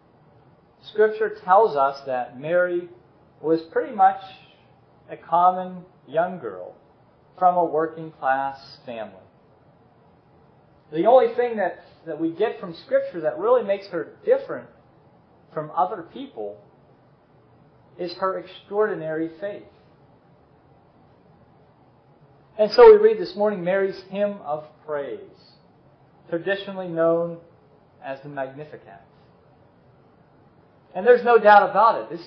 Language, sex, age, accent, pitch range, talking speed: English, male, 40-59, American, 150-205 Hz, 110 wpm